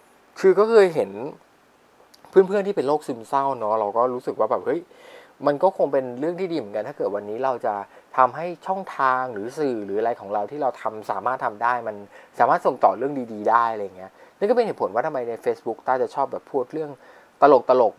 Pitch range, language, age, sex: 110-160 Hz, Thai, 20-39, male